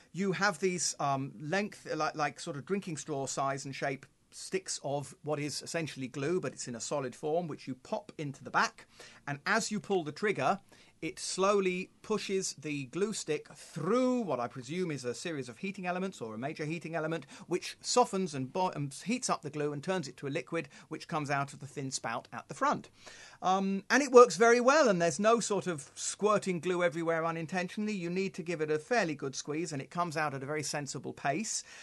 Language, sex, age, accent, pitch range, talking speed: English, male, 40-59, British, 145-195 Hz, 220 wpm